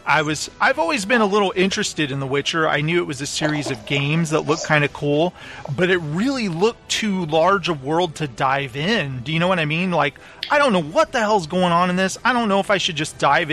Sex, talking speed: male, 275 wpm